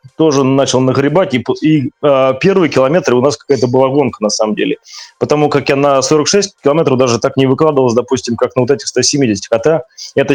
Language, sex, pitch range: Russian, male, 125-150 Hz